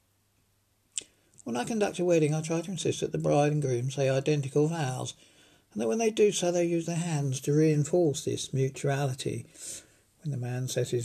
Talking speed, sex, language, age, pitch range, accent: 195 wpm, male, English, 60-79, 105-155 Hz, British